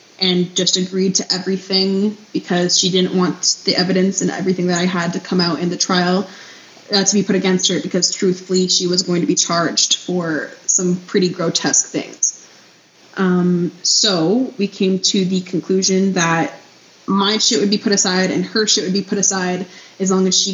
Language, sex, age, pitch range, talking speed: English, female, 20-39, 175-190 Hz, 195 wpm